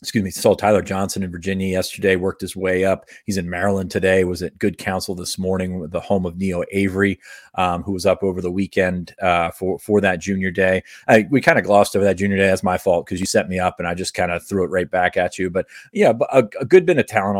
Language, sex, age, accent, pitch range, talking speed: English, male, 30-49, American, 90-100 Hz, 265 wpm